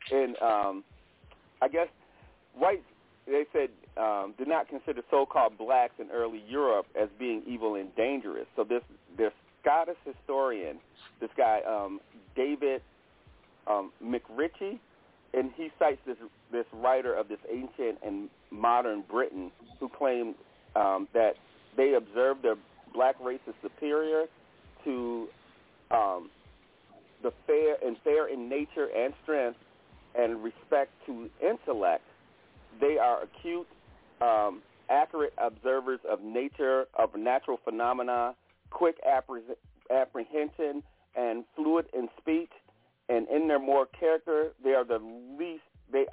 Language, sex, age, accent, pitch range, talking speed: English, male, 40-59, American, 115-165 Hz, 125 wpm